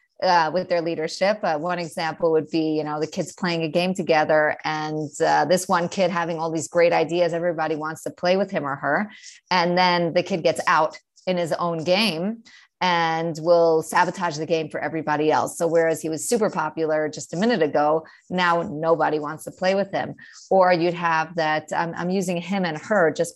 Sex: female